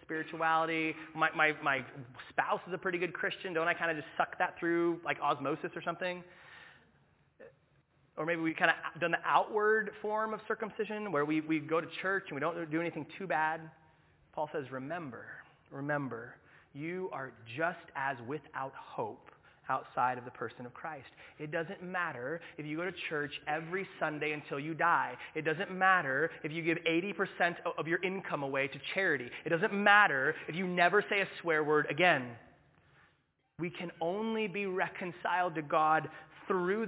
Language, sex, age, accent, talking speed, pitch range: English, male, 30-49, American, 175 wpm, 155-190 Hz